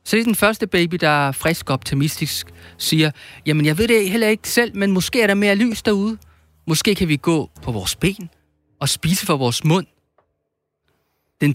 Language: Danish